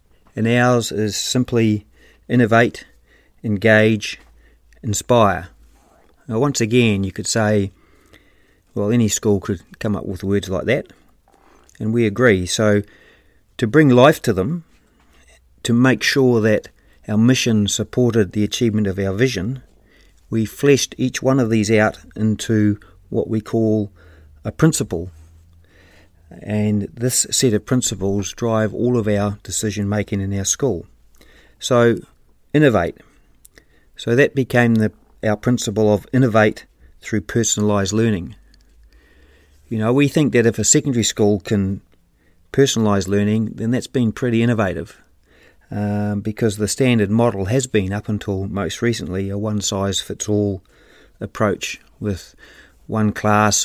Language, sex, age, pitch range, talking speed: English, male, 50-69, 95-115 Hz, 130 wpm